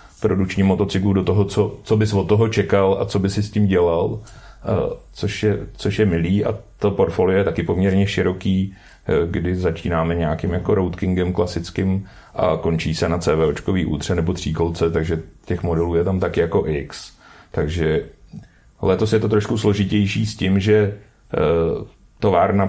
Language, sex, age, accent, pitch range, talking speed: Czech, male, 30-49, native, 90-100 Hz, 160 wpm